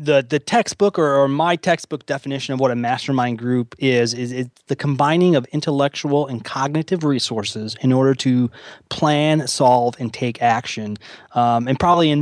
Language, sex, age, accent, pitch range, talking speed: English, male, 30-49, American, 125-155 Hz, 170 wpm